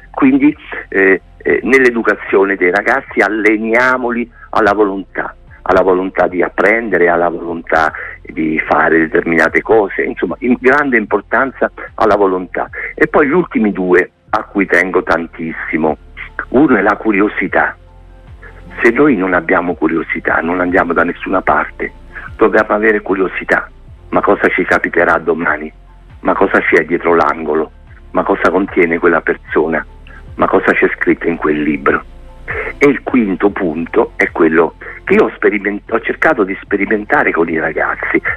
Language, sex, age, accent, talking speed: Italian, male, 50-69, native, 140 wpm